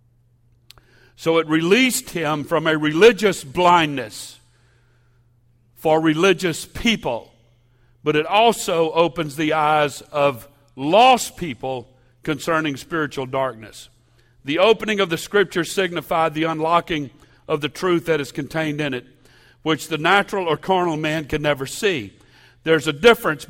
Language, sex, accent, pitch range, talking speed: English, male, American, 130-165 Hz, 130 wpm